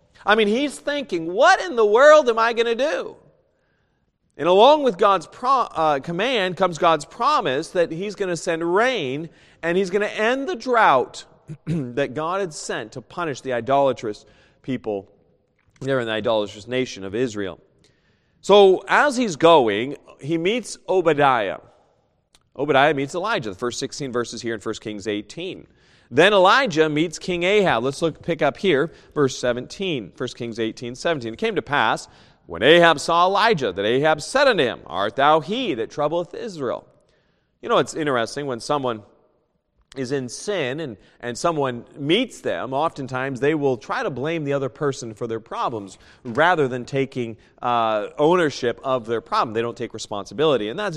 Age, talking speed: 40-59, 170 wpm